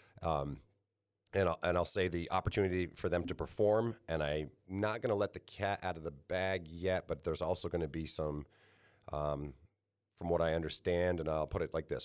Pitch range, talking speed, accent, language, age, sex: 80-100 Hz, 205 wpm, American, English, 40-59, male